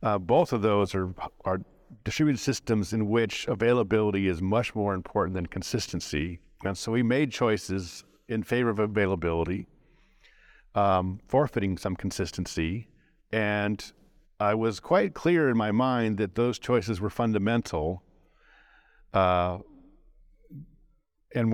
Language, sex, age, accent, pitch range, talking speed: English, male, 50-69, American, 90-110 Hz, 125 wpm